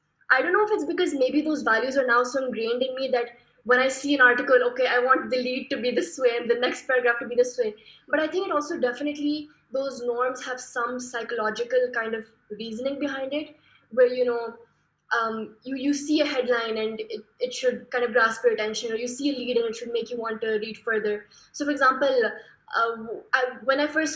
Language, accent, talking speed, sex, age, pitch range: English, Indian, 235 wpm, female, 20-39, 230-275 Hz